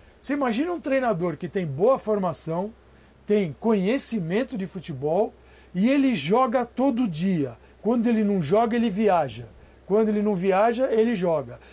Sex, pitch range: male, 185-240 Hz